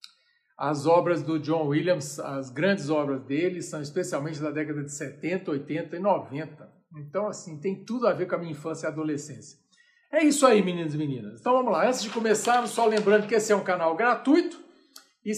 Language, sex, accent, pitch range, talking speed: Portuguese, male, Brazilian, 165-235 Hz, 200 wpm